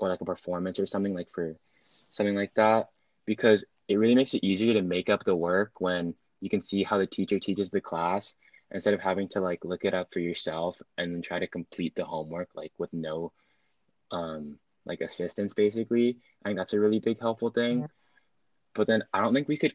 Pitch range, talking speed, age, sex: 90-110 Hz, 210 wpm, 20-39, male